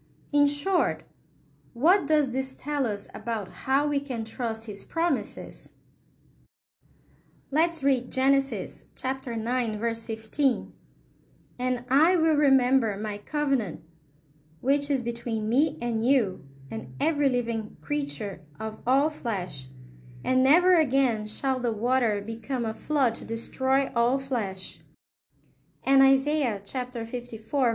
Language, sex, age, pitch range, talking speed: English, female, 20-39, 210-275 Hz, 125 wpm